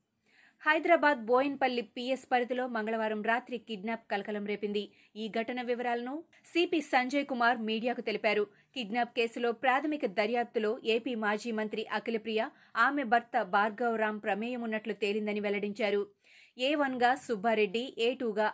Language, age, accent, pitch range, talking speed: Telugu, 20-39, native, 220-260 Hz, 115 wpm